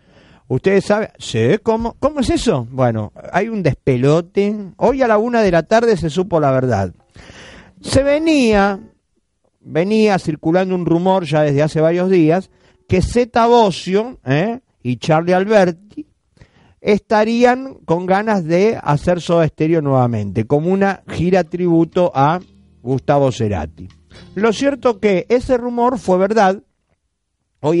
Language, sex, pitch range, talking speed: Spanish, male, 150-215 Hz, 135 wpm